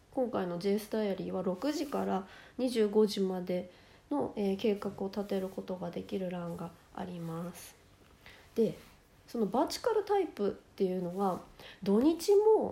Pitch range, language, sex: 185-255 Hz, Japanese, female